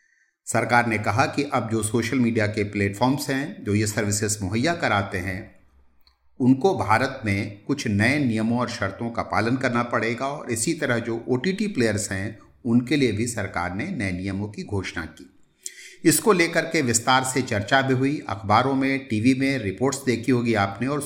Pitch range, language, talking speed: 100-135 Hz, Hindi, 180 wpm